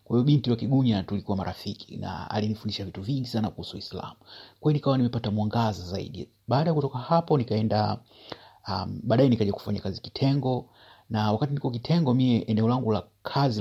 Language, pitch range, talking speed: Swahili, 105-120 Hz, 150 wpm